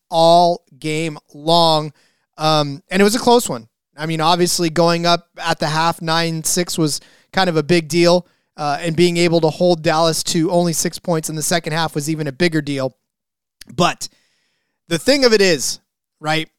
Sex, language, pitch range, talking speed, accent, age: male, English, 155-190 Hz, 190 wpm, American, 30-49